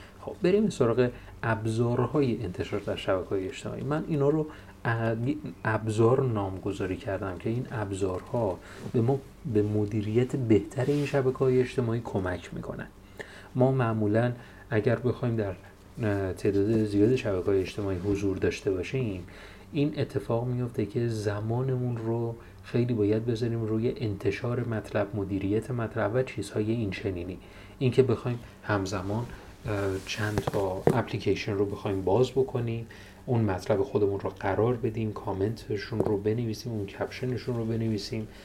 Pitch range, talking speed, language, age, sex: 100-125 Hz, 130 wpm, Persian, 30-49, male